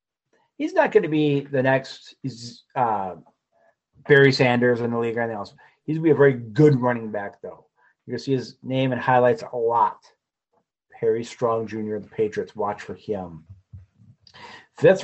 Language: English